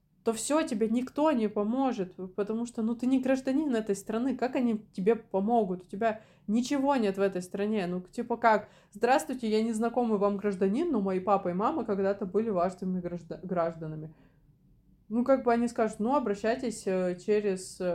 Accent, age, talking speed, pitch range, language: native, 20-39, 170 wpm, 190-240 Hz, Russian